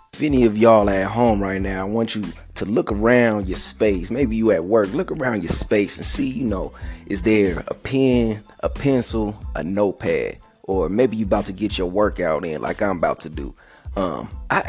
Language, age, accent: English, 20-39, American